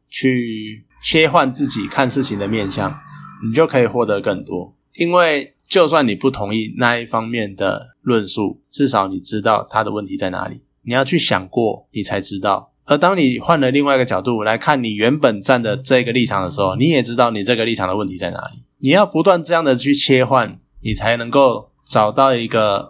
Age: 20-39